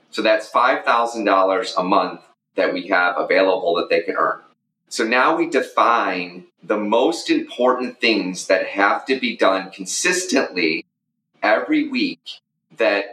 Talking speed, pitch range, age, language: 135 wpm, 100-145 Hz, 30-49, English